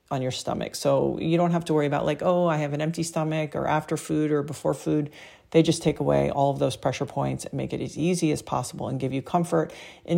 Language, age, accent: English, 40-59, American